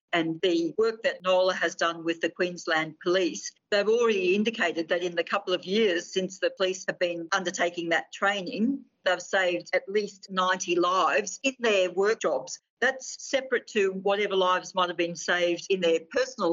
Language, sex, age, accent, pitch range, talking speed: English, female, 50-69, Australian, 175-220 Hz, 180 wpm